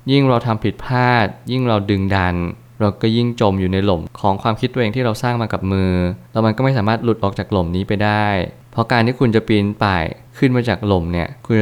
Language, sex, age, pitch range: Thai, male, 20-39, 100-120 Hz